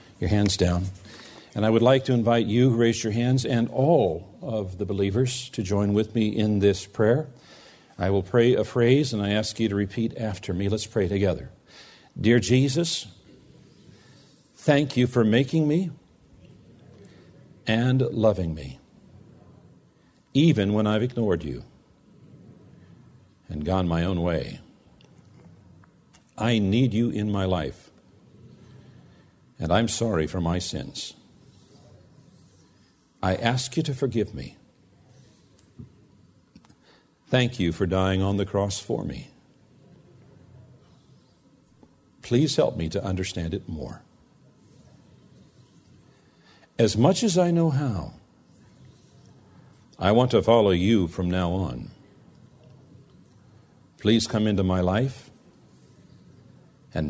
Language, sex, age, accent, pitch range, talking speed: English, male, 50-69, American, 95-125 Hz, 120 wpm